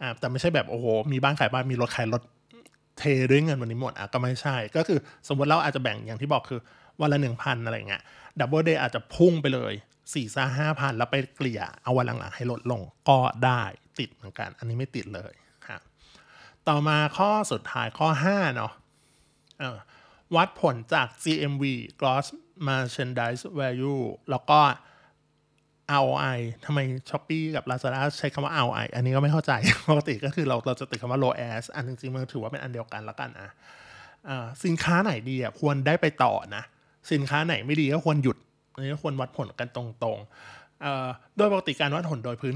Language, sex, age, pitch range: Thai, male, 20-39, 120-150 Hz